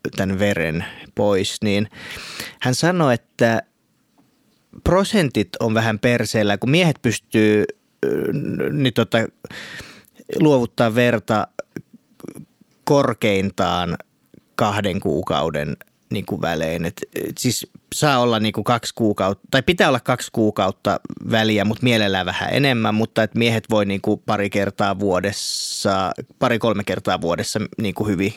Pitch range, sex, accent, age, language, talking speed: 105-125 Hz, male, native, 30-49, Finnish, 110 wpm